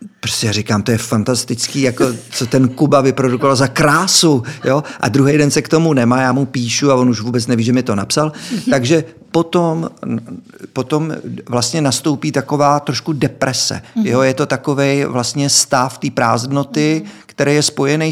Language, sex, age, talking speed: Czech, male, 50-69, 170 wpm